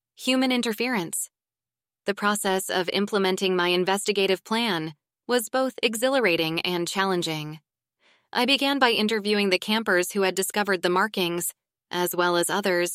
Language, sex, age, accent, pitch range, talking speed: English, female, 20-39, American, 175-205 Hz, 135 wpm